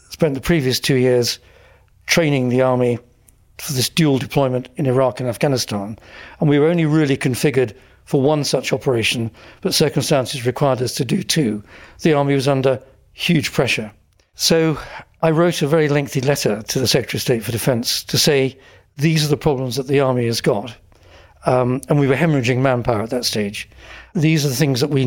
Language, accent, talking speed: English, British, 185 wpm